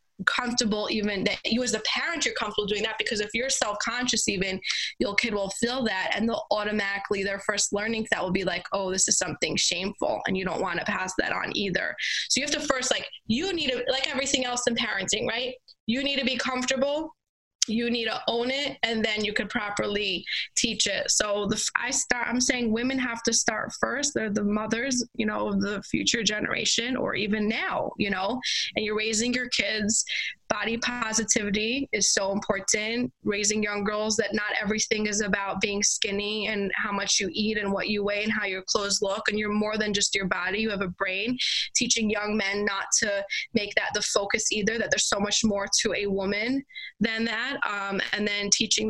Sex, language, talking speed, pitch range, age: female, English, 210 wpm, 205-245 Hz, 20-39